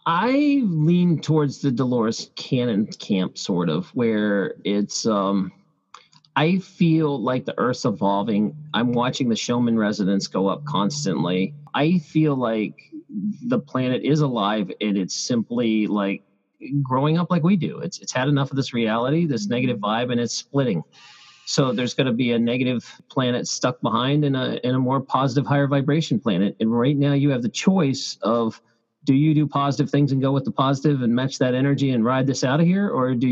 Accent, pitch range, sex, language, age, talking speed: American, 115-155 Hz, male, English, 40-59, 185 wpm